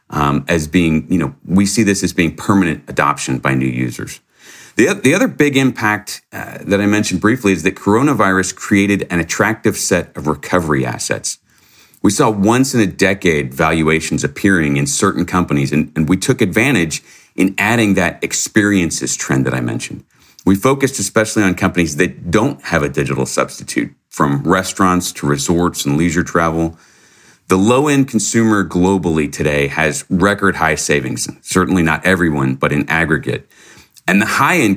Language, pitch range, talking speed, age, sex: English, 80-105 Hz, 165 wpm, 40-59, male